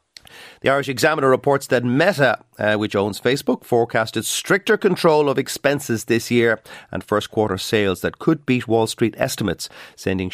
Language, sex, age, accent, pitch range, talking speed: English, male, 40-59, Irish, 100-130 Hz, 165 wpm